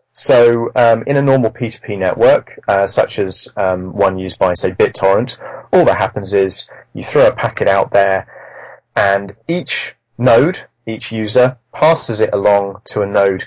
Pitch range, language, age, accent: 100-125 Hz, English, 30-49, British